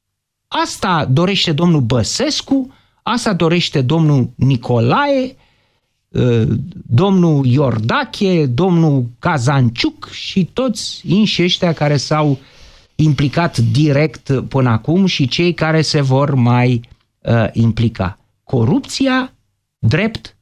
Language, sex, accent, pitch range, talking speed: Romanian, male, native, 125-200 Hz, 90 wpm